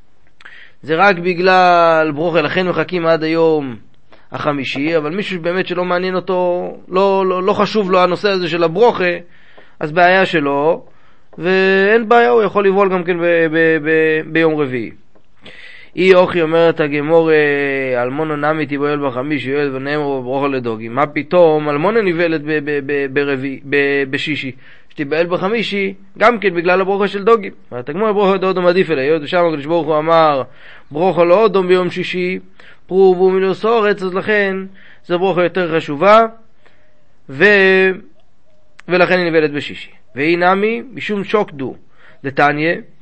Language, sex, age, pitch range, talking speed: Hebrew, male, 30-49, 140-185 Hz, 140 wpm